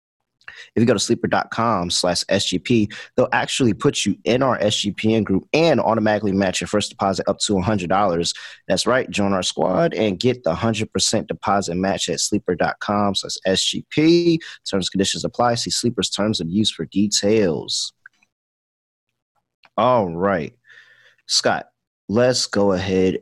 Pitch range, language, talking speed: 90-110 Hz, English, 145 wpm